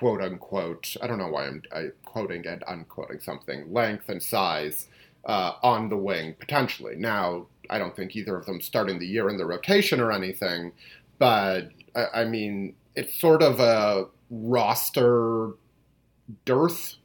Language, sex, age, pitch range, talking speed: English, male, 30-49, 100-135 Hz, 155 wpm